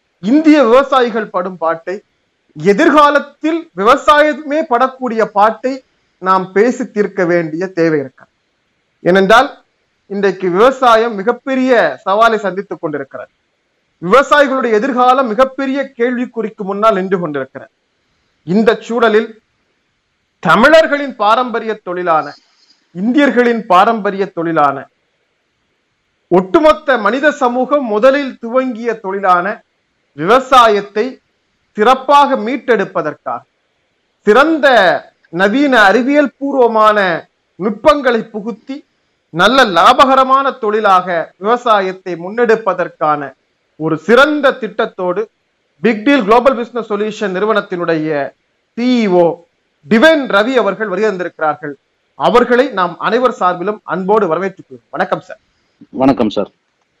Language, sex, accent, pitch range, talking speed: Tamil, male, native, 185-255 Hz, 85 wpm